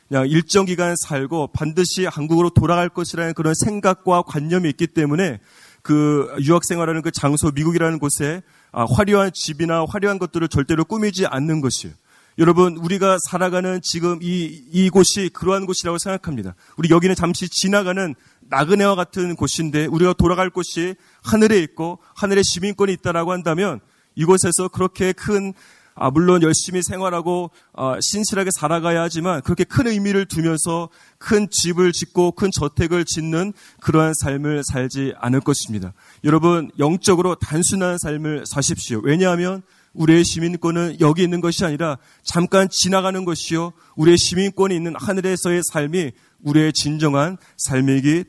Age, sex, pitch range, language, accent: 30-49, male, 150-185 Hz, Korean, native